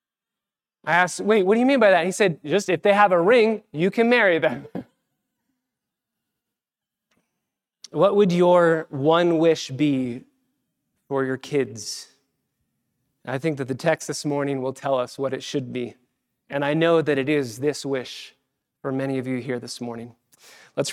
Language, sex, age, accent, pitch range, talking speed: English, male, 30-49, American, 145-195 Hz, 170 wpm